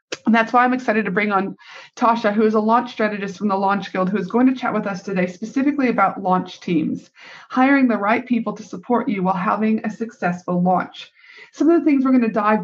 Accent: American